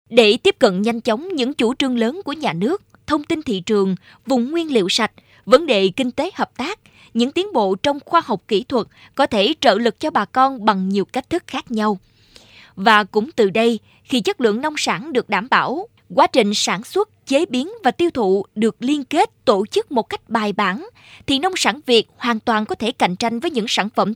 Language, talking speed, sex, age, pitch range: Vietnamese, 225 wpm, female, 20-39, 205-265 Hz